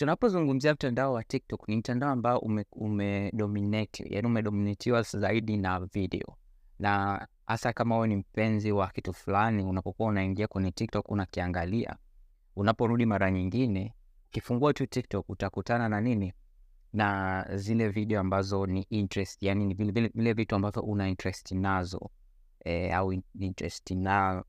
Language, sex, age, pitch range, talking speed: Swahili, male, 20-39, 95-115 Hz, 135 wpm